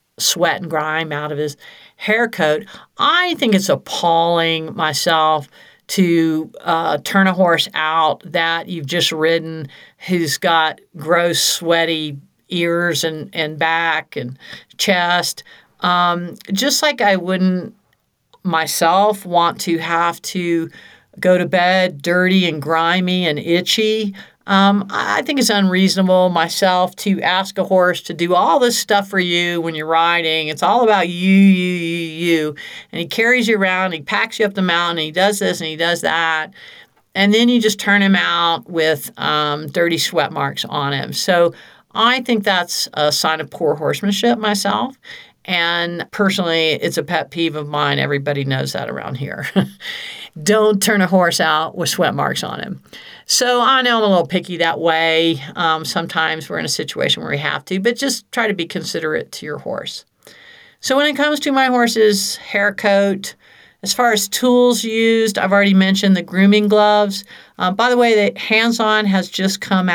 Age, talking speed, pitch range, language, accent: 50-69, 170 wpm, 165-205 Hz, English, American